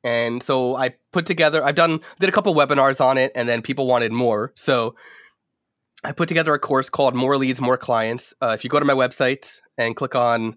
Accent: American